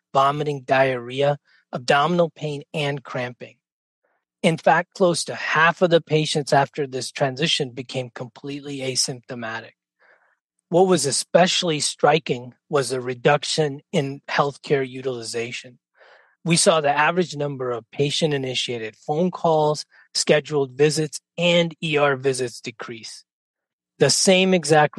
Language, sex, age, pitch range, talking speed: English, male, 30-49, 130-160 Hz, 115 wpm